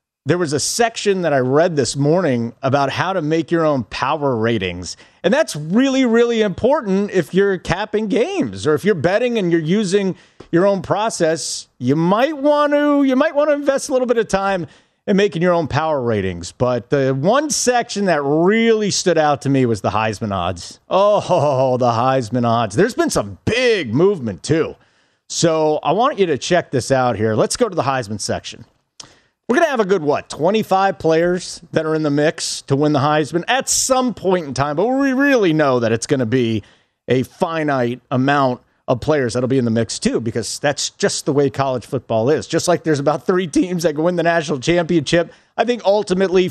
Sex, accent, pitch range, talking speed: male, American, 130-195 Hz, 210 wpm